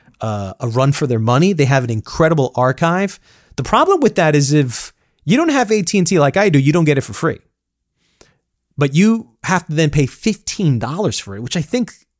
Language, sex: English, male